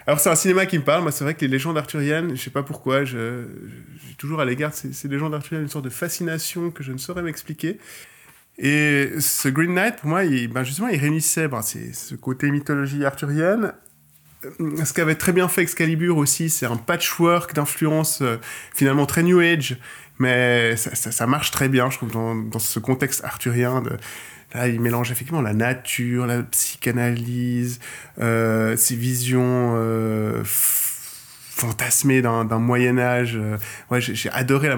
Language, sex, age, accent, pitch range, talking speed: French, male, 20-39, French, 120-155 Hz, 190 wpm